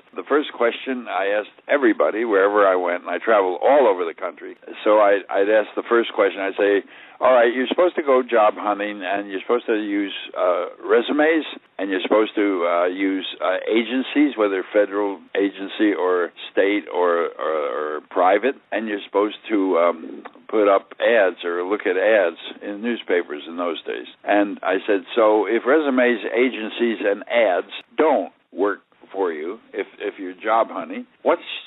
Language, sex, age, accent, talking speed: English, male, 60-79, American, 165 wpm